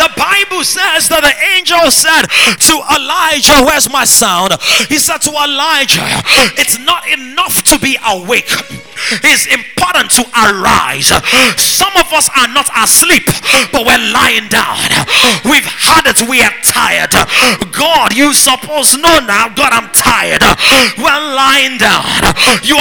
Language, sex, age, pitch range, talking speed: English, male, 30-49, 255-310 Hz, 140 wpm